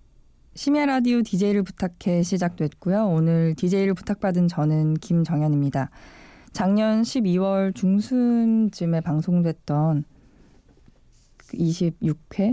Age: 20-39